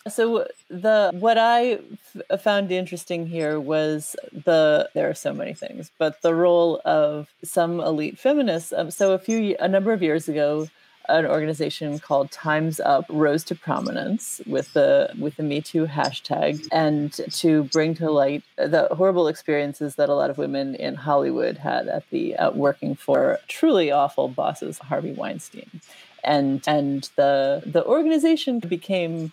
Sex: female